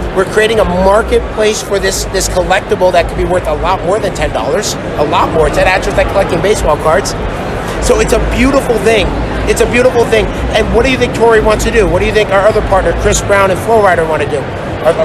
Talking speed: 240 wpm